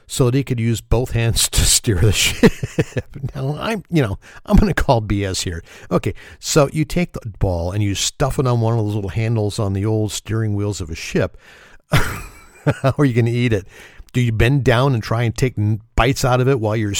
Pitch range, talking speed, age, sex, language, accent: 105-135 Hz, 235 wpm, 50-69, male, English, American